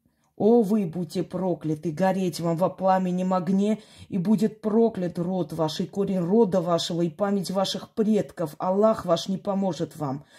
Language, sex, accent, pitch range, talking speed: Russian, female, native, 170-210 Hz, 155 wpm